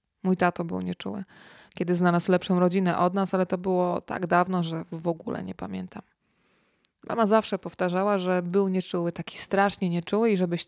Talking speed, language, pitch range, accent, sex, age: 175 wpm, Polish, 175-205 Hz, native, female, 20-39